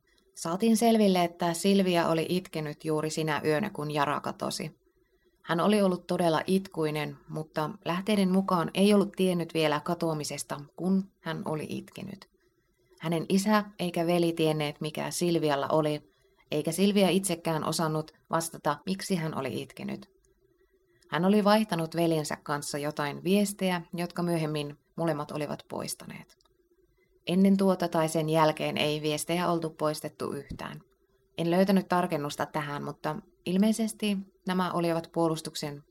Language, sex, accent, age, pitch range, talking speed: Finnish, female, native, 30-49, 155-190 Hz, 130 wpm